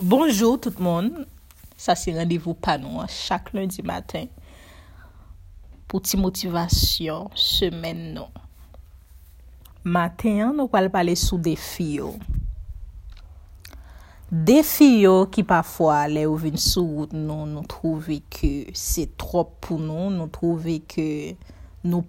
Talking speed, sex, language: 115 wpm, female, French